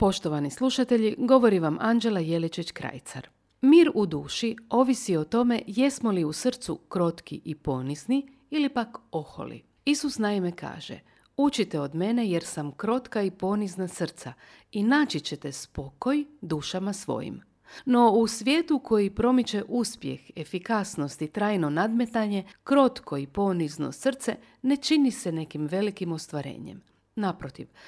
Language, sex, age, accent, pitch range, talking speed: Croatian, female, 50-69, native, 165-240 Hz, 135 wpm